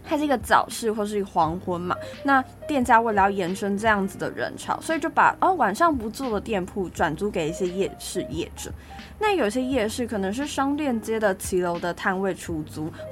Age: 20-39